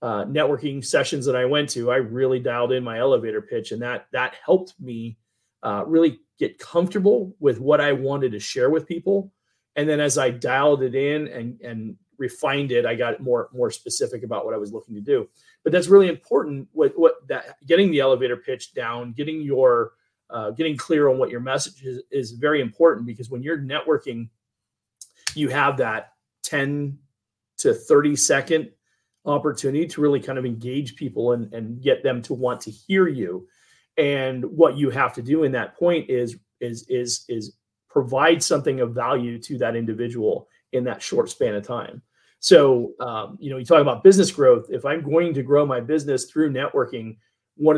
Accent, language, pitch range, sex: American, English, 120-155 Hz, male